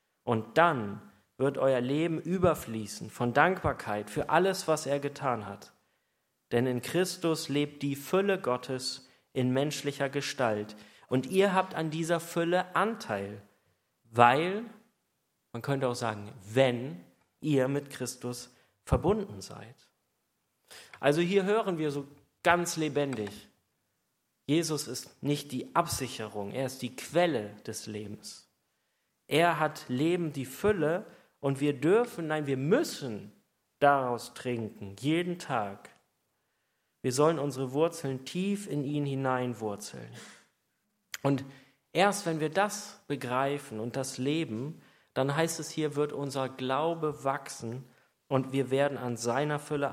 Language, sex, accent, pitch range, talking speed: German, male, German, 125-165 Hz, 125 wpm